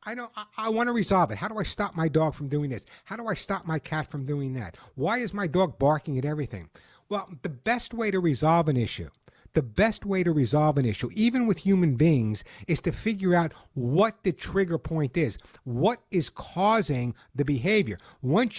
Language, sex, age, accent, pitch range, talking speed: English, male, 60-79, American, 145-195 Hz, 215 wpm